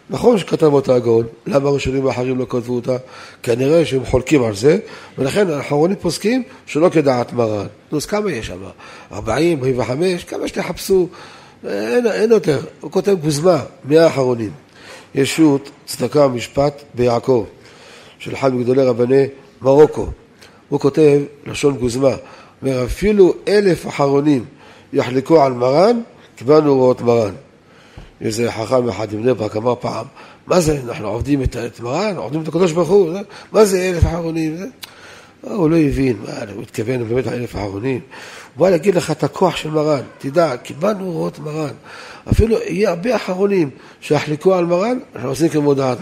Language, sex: Hebrew, male